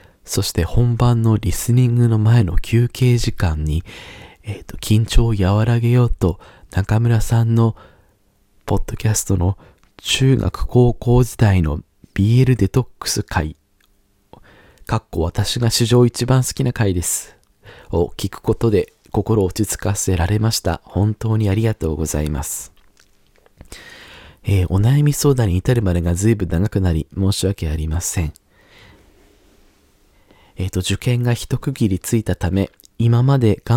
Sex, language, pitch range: male, Japanese, 95-120 Hz